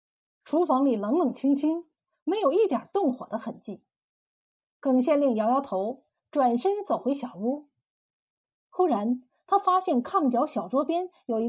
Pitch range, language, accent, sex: 240-335 Hz, Chinese, native, female